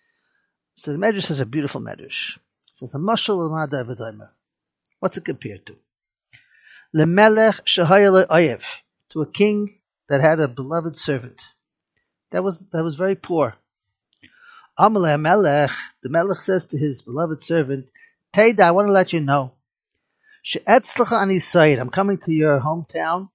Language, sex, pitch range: English, male, 155-200 Hz